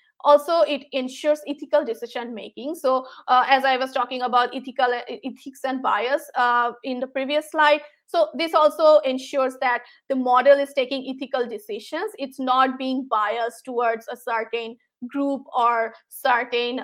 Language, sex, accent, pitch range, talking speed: English, female, Indian, 240-280 Hz, 155 wpm